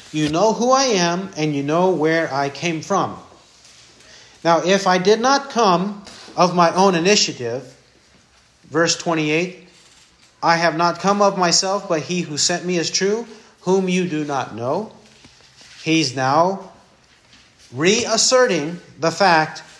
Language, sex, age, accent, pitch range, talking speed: English, male, 50-69, American, 160-220 Hz, 140 wpm